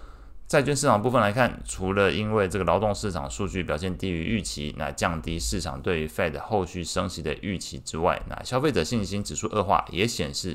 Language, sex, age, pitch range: Chinese, male, 20-39, 80-100 Hz